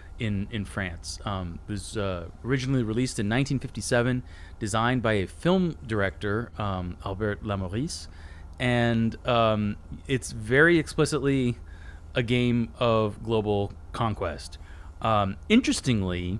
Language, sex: English, male